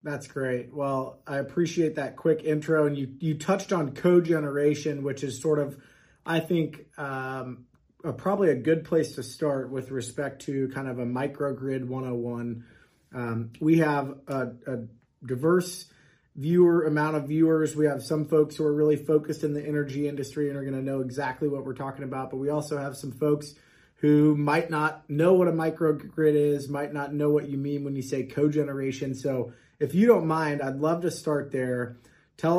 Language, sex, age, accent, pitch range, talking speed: English, male, 30-49, American, 130-150 Hz, 190 wpm